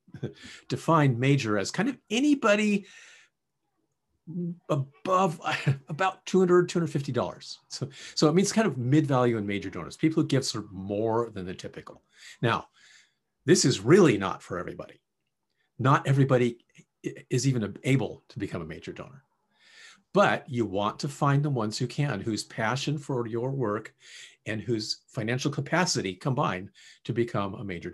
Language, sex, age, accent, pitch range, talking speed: English, male, 50-69, American, 105-150 Hz, 150 wpm